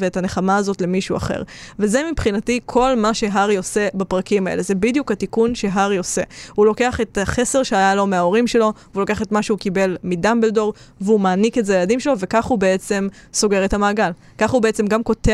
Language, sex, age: Hebrew, female, 20-39